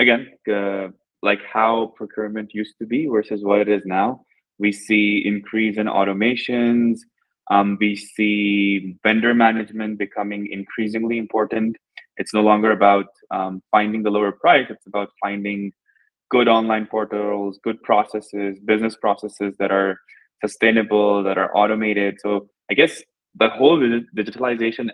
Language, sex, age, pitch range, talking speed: English, male, 20-39, 100-115 Hz, 135 wpm